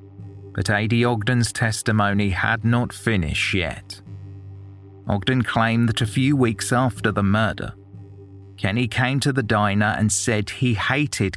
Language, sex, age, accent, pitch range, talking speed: English, male, 30-49, British, 100-115 Hz, 135 wpm